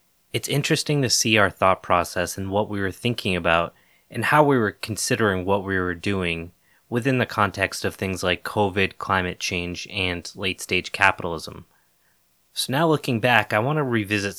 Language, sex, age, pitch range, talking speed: English, male, 20-39, 95-120 Hz, 175 wpm